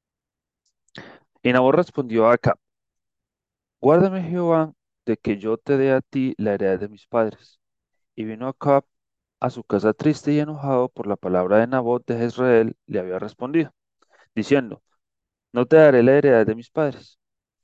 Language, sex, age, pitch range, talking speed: Spanish, male, 30-49, 115-150 Hz, 160 wpm